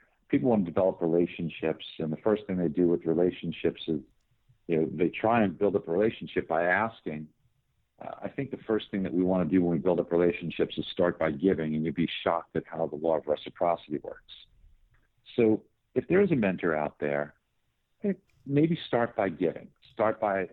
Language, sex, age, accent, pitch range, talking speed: English, male, 50-69, American, 90-125 Hz, 205 wpm